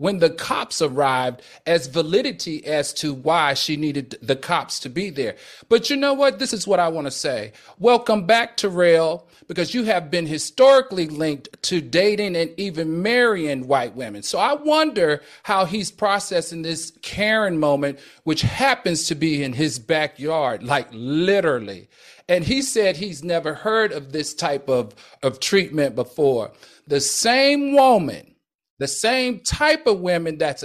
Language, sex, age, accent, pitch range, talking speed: English, male, 40-59, American, 145-200 Hz, 160 wpm